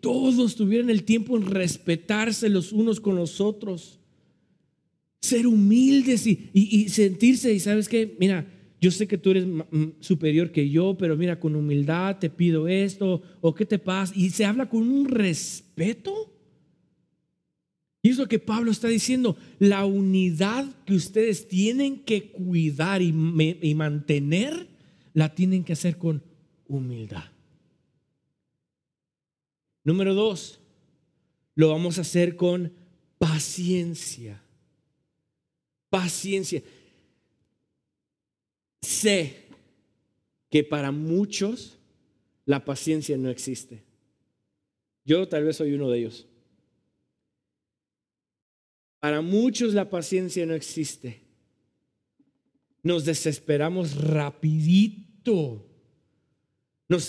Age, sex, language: 50-69, male, Spanish